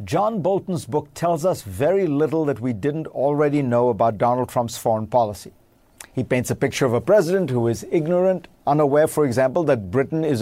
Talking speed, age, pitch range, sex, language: 190 wpm, 50-69, 120-150 Hz, male, English